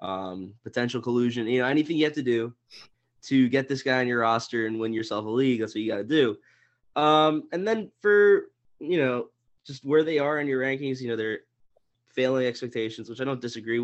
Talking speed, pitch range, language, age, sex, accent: 215 wpm, 120-150 Hz, English, 20-39, male, American